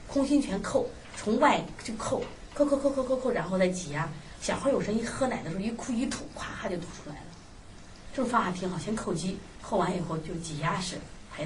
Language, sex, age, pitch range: Chinese, female, 30-49, 165-260 Hz